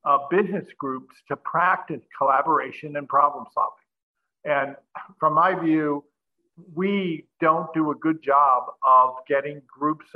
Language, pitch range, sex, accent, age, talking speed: English, 140-175 Hz, male, American, 50-69, 130 wpm